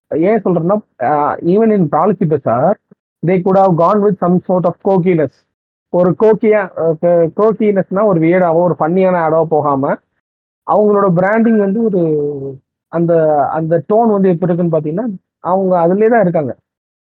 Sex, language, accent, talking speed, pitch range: male, Tamil, native, 90 wpm, 150-190 Hz